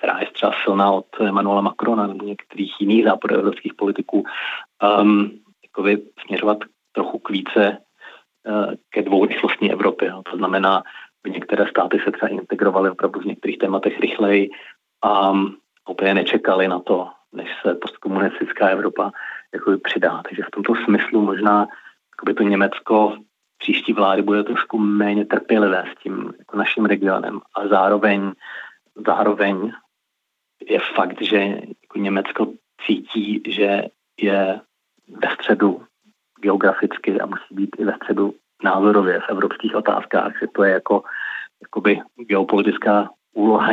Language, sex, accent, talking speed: Czech, male, native, 135 wpm